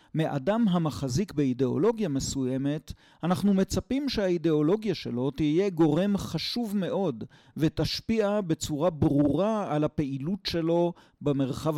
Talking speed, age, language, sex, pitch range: 95 wpm, 40-59, Hebrew, male, 135-175 Hz